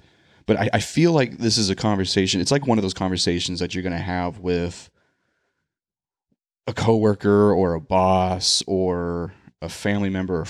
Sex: male